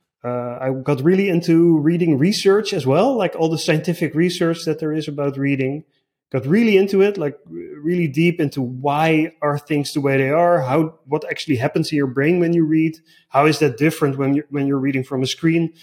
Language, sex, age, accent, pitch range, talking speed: English, male, 30-49, Dutch, 140-170 Hz, 215 wpm